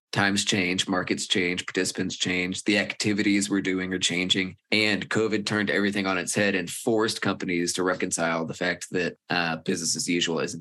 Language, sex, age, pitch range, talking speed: English, male, 20-39, 90-100 Hz, 180 wpm